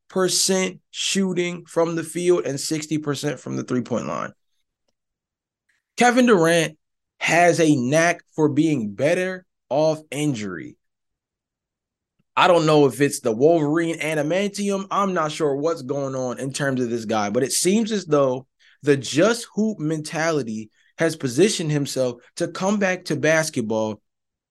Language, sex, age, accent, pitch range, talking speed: English, male, 20-39, American, 130-185 Hz, 140 wpm